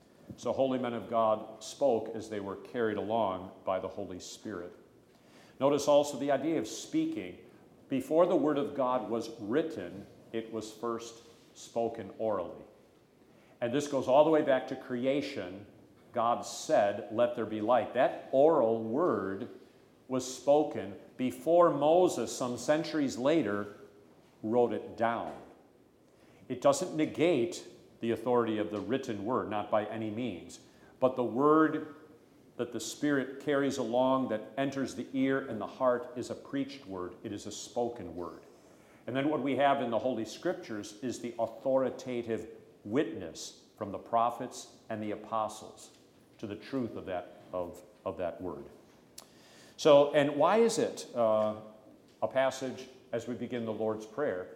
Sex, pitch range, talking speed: male, 110-140 Hz, 150 wpm